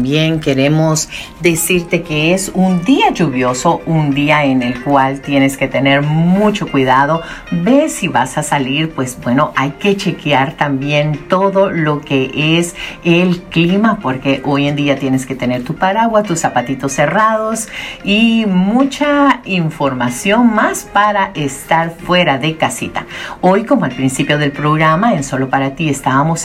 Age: 50-69